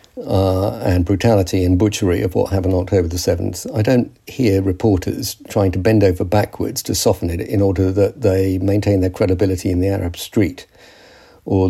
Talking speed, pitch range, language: 180 wpm, 95-110 Hz, English